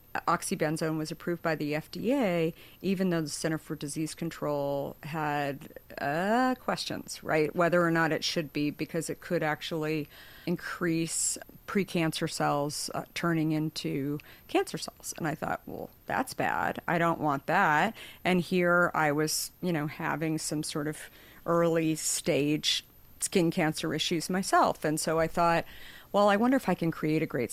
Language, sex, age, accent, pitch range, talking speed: English, female, 50-69, American, 155-180 Hz, 160 wpm